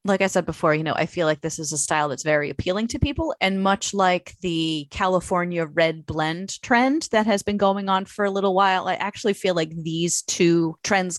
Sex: female